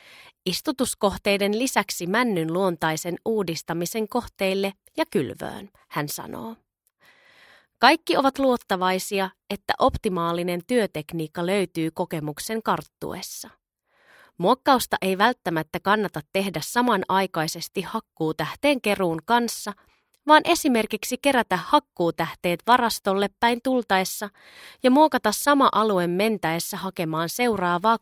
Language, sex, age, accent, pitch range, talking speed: Finnish, female, 30-49, native, 170-235 Hz, 90 wpm